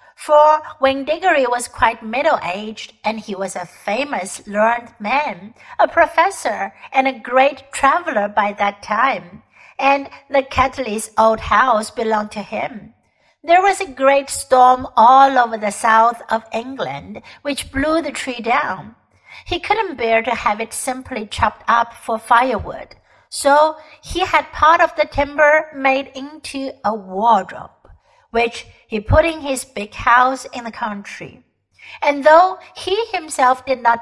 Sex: female